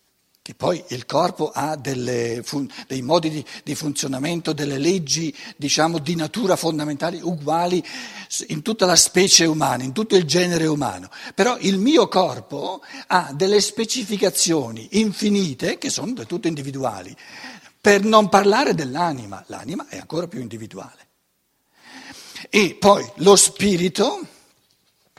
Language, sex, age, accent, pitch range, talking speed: Italian, male, 60-79, native, 145-205 Hz, 130 wpm